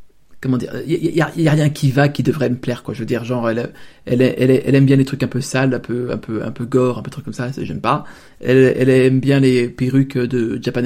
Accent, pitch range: French, 125-140 Hz